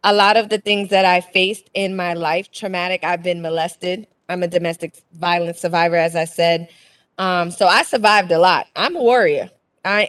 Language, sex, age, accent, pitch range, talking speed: English, female, 20-39, American, 170-210 Hz, 195 wpm